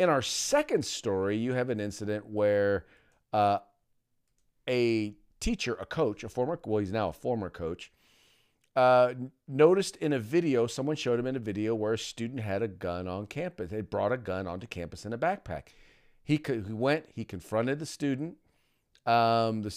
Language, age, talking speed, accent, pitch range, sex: English, 40-59, 175 wpm, American, 105-130 Hz, male